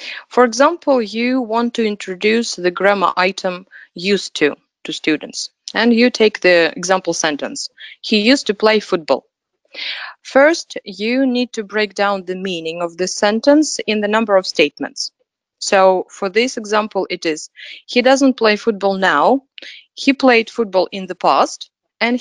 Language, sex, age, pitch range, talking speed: Russian, female, 30-49, 190-250 Hz, 155 wpm